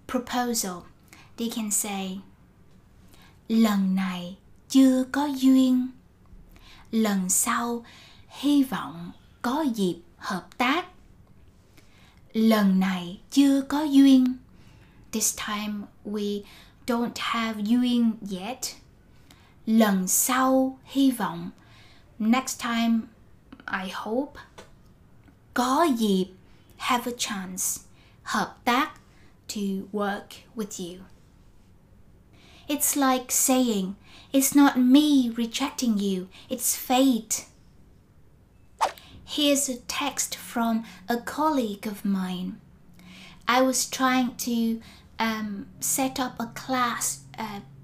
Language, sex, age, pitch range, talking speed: Vietnamese, female, 20-39, 195-255 Hz, 95 wpm